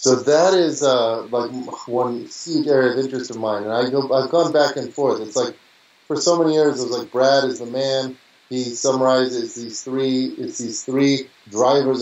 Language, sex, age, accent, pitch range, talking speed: English, male, 30-49, American, 120-140 Hz, 205 wpm